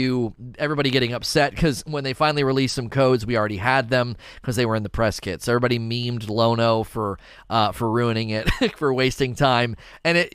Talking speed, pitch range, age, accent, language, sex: 205 wpm, 115-145 Hz, 30-49, American, English, male